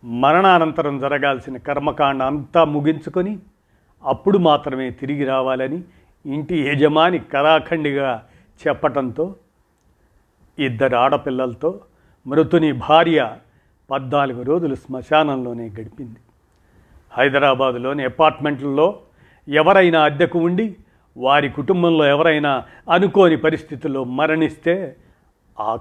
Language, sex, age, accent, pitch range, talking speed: Telugu, male, 50-69, native, 130-160 Hz, 75 wpm